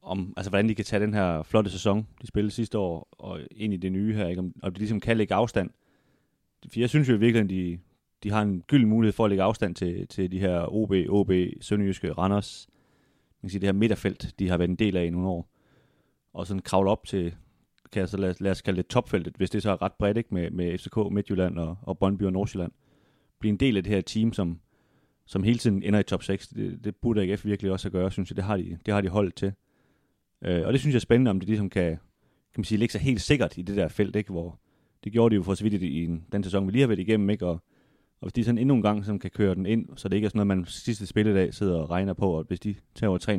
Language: Danish